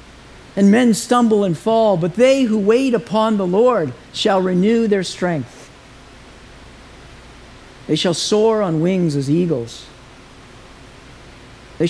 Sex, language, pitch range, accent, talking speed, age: male, English, 135-220 Hz, American, 120 wpm, 50-69